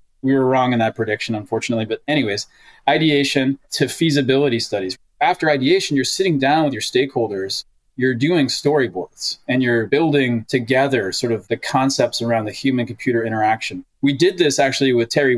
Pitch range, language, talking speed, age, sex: 115-140 Hz, English, 170 wpm, 20-39, male